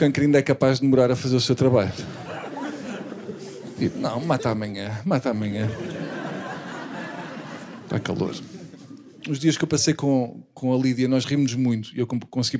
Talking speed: 160 wpm